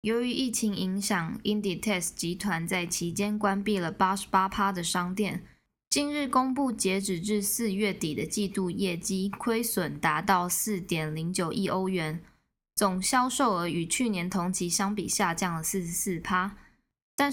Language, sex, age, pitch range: Chinese, female, 20-39, 180-220 Hz